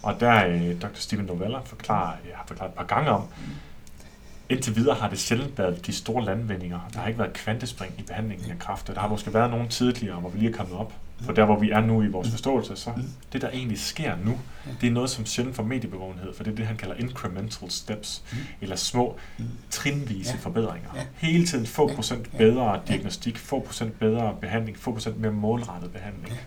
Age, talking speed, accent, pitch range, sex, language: 30-49, 200 wpm, native, 100-120 Hz, male, Danish